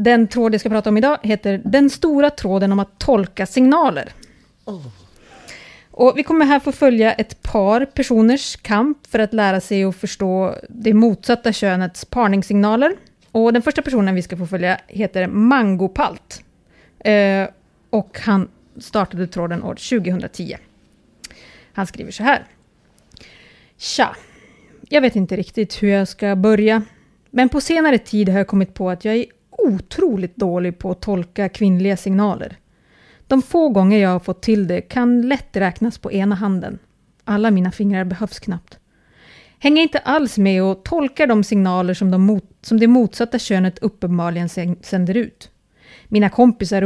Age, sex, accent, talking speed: 30-49, female, Swedish, 150 wpm